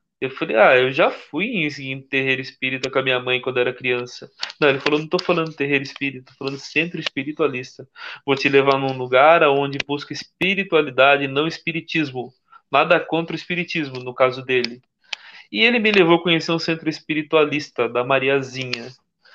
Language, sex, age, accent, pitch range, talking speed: Portuguese, male, 20-39, Brazilian, 135-155 Hz, 175 wpm